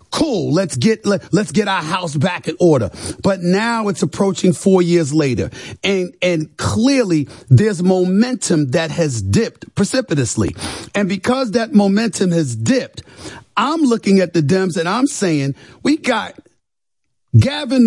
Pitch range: 120-200 Hz